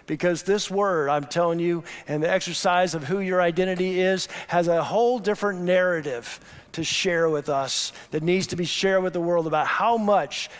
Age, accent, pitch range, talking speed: 50-69, American, 160-185 Hz, 190 wpm